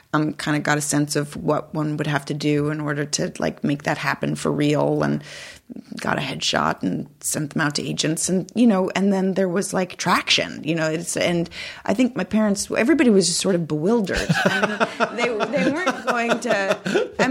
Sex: female